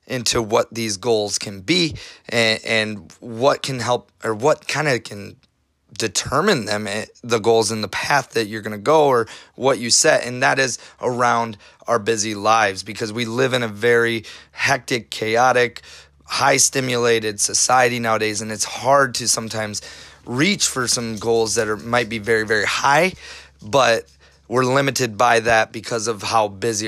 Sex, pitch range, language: male, 110-120 Hz, English